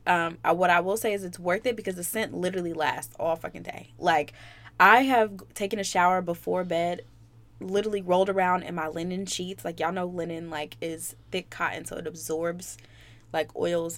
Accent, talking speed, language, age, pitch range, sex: American, 195 wpm, English, 20-39, 165-195 Hz, female